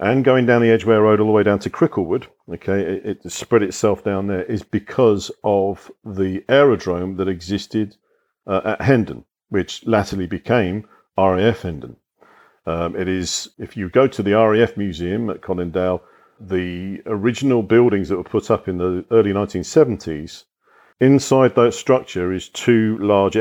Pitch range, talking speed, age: 90-110 Hz, 160 wpm, 50-69